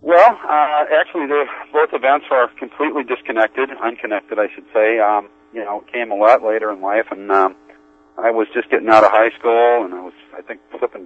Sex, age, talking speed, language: male, 40-59, 205 wpm, English